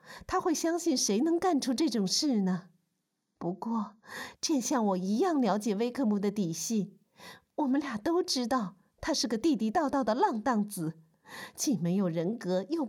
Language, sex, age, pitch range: Chinese, female, 50-69, 185-270 Hz